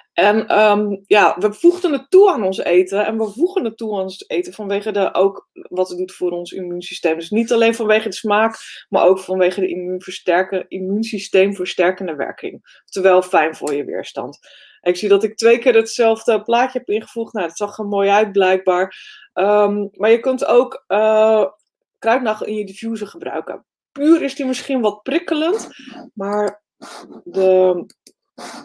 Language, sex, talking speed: Dutch, female, 170 wpm